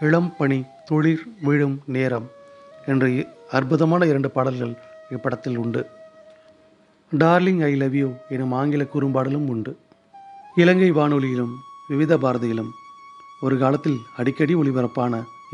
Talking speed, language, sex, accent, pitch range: 100 wpm, Tamil, male, native, 135-180 Hz